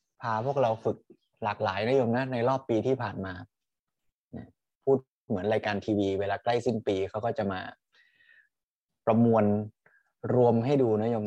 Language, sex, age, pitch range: Thai, male, 20-39, 105-130 Hz